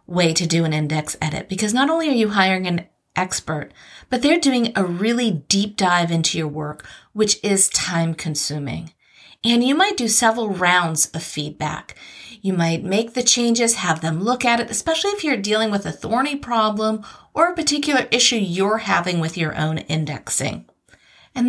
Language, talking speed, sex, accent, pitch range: English, 180 wpm, female, American, 170-245 Hz